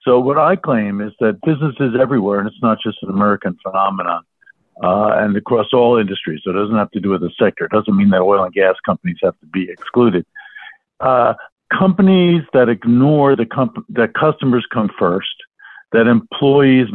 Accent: American